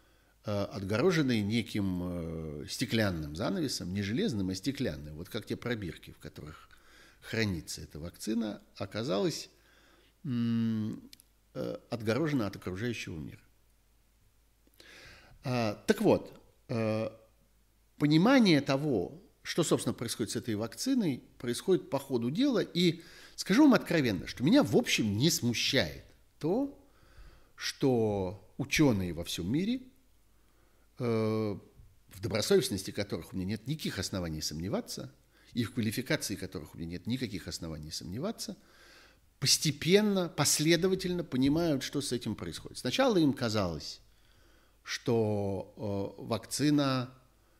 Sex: male